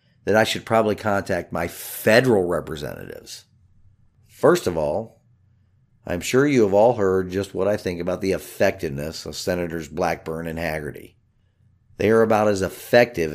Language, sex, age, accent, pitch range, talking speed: English, male, 50-69, American, 90-115 Hz, 155 wpm